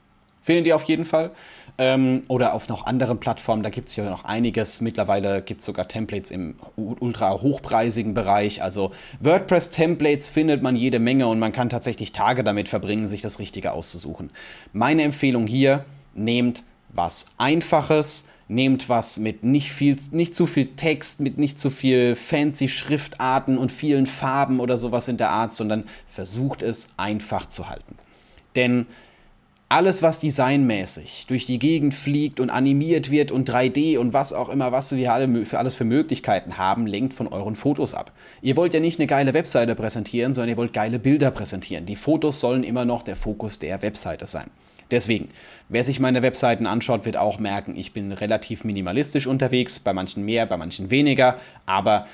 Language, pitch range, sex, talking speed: German, 105-135 Hz, male, 175 wpm